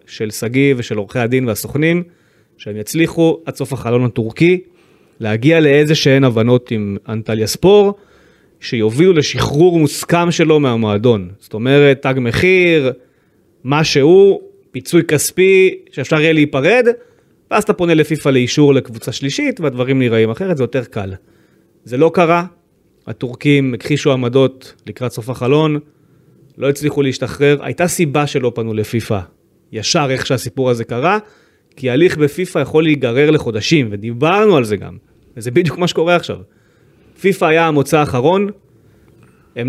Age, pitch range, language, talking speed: 30-49, 125-170 Hz, Hebrew, 135 wpm